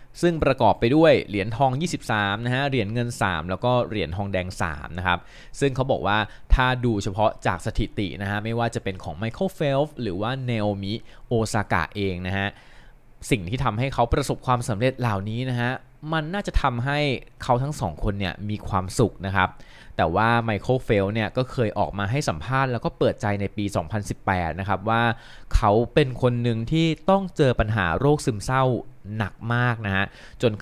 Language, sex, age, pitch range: Thai, male, 20-39, 100-130 Hz